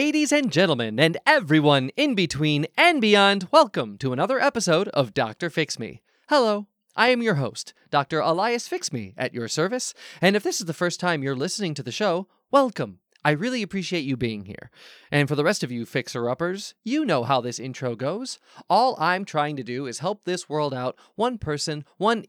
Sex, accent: male, American